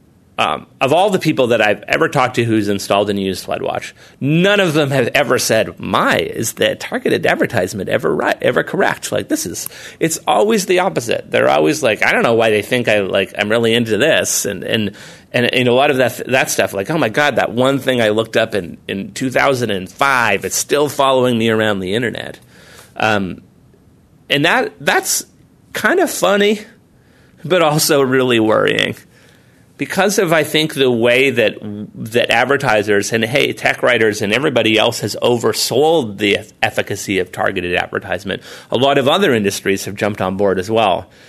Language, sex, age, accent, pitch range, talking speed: English, male, 30-49, American, 100-140 Hz, 185 wpm